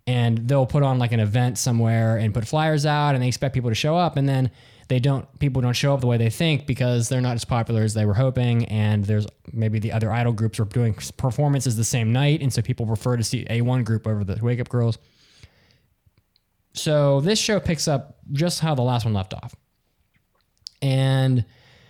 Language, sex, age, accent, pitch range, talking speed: English, male, 10-29, American, 110-135 Hz, 220 wpm